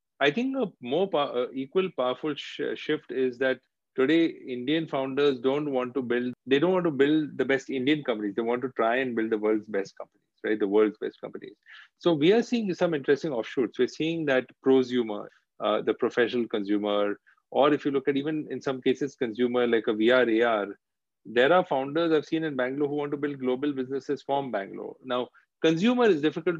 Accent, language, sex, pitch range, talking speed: Indian, English, male, 120-150 Hz, 200 wpm